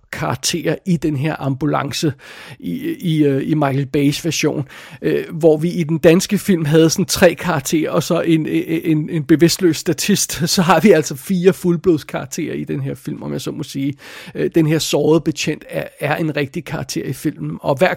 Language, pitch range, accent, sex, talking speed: Danish, 150-175 Hz, native, male, 195 wpm